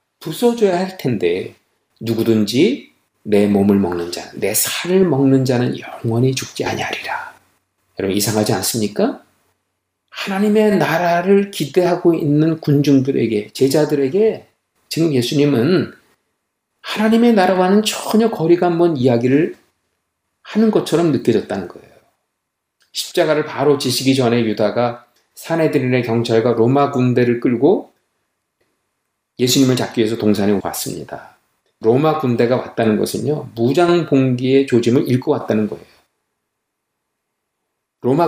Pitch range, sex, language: 115-160 Hz, male, Korean